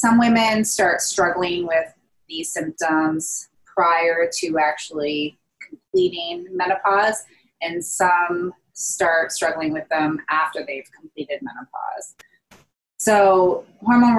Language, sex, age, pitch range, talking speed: English, female, 20-39, 155-215 Hz, 100 wpm